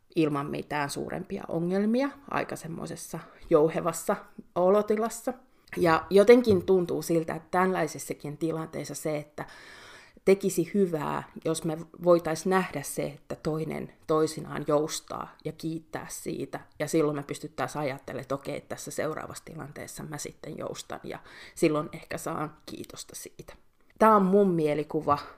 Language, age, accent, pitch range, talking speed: Finnish, 30-49, native, 150-190 Hz, 130 wpm